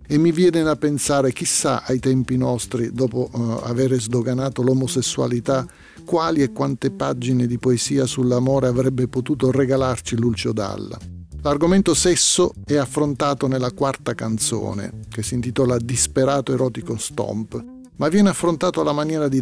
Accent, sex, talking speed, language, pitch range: native, male, 135 wpm, Italian, 115-135 Hz